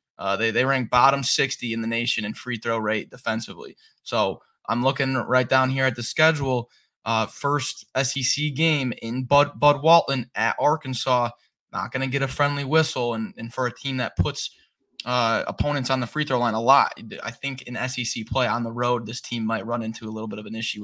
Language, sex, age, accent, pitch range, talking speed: English, male, 20-39, American, 115-135 Hz, 215 wpm